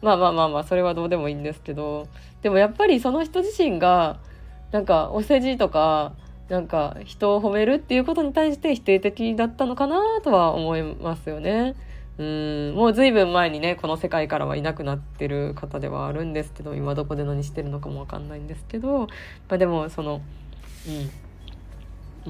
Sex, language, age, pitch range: female, Japanese, 20-39, 150-230 Hz